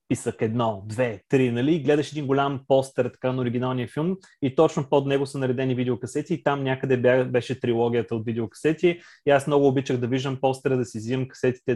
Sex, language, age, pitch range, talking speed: male, Bulgarian, 30-49, 130-150 Hz, 200 wpm